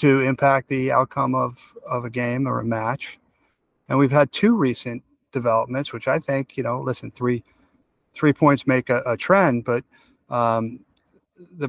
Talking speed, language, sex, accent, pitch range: 170 wpm, English, male, American, 120-140 Hz